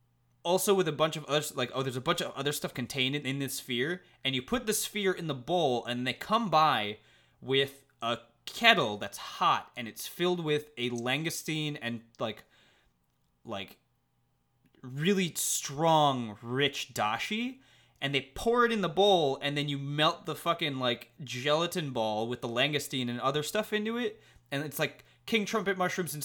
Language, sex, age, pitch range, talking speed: English, male, 20-39, 120-165 Hz, 185 wpm